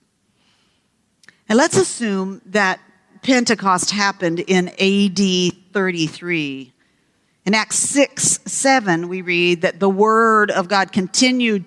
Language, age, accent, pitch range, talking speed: English, 50-69, American, 185-225 Hz, 110 wpm